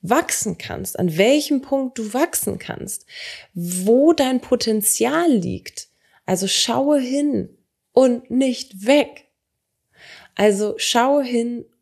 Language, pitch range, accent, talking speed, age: German, 180-240 Hz, German, 105 wpm, 20-39